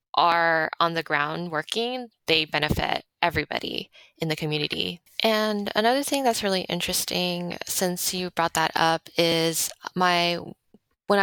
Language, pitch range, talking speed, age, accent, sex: English, 155-180 Hz, 135 wpm, 20-39, American, female